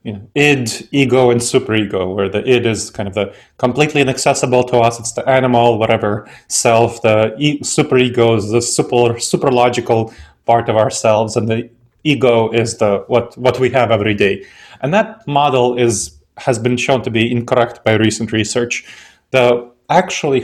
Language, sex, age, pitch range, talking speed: English, male, 30-49, 115-130 Hz, 175 wpm